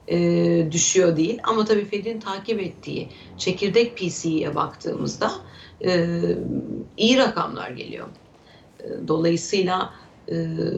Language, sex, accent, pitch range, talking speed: Turkish, female, native, 170-220 Hz, 100 wpm